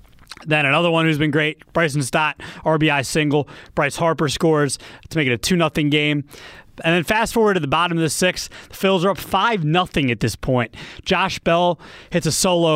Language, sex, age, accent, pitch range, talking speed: English, male, 30-49, American, 130-165 Hz, 200 wpm